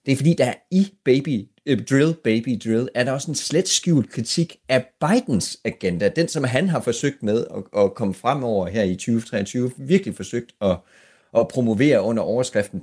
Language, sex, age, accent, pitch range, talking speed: Danish, male, 30-49, native, 100-135 Hz, 180 wpm